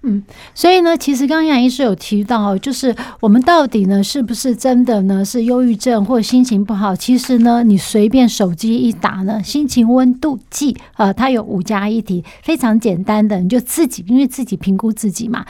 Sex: female